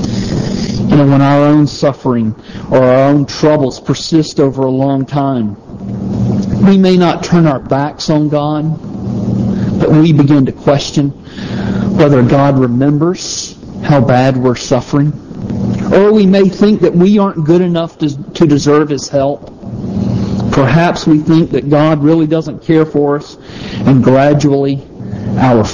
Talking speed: 145 wpm